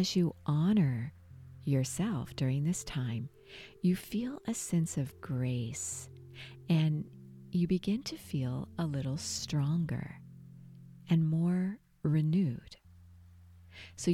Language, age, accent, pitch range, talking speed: English, 50-69, American, 125-175 Hz, 105 wpm